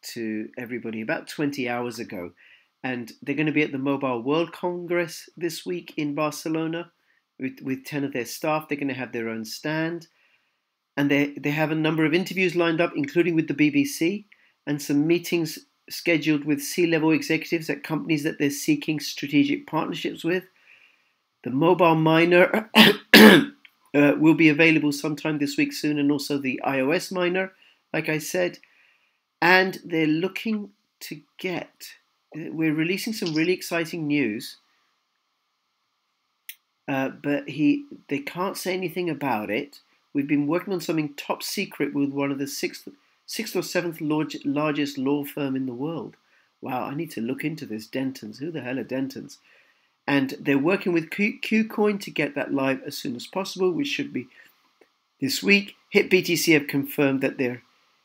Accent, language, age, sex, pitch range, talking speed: British, English, 40-59, male, 140-180 Hz, 165 wpm